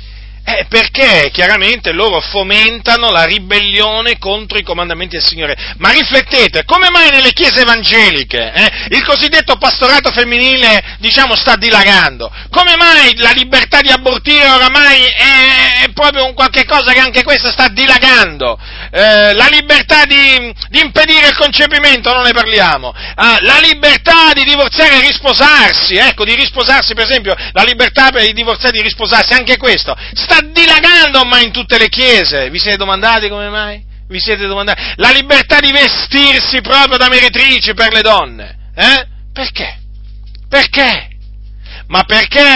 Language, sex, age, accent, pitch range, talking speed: Italian, male, 40-59, native, 200-280 Hz, 150 wpm